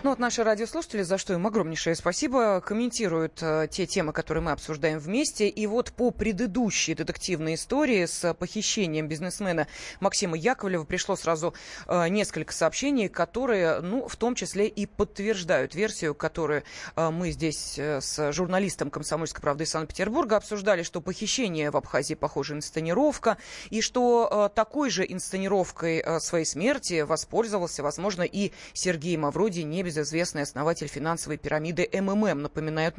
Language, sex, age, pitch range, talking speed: Russian, female, 20-39, 160-215 Hz, 135 wpm